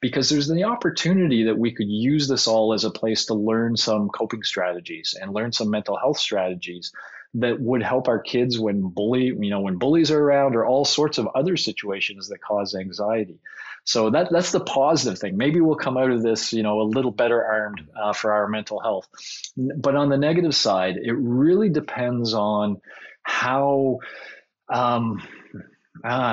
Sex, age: male, 30-49